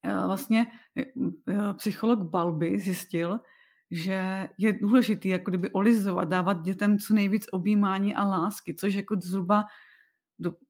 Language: Czech